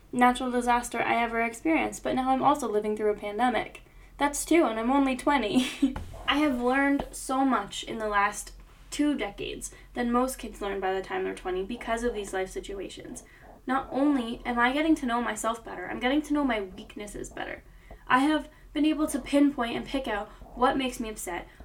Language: English